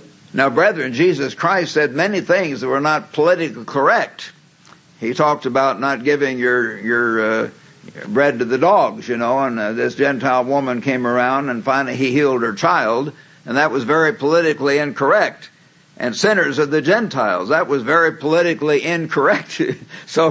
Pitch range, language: 130-160 Hz, English